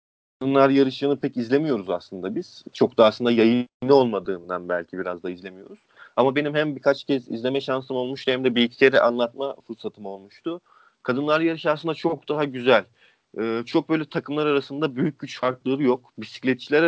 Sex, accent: male, native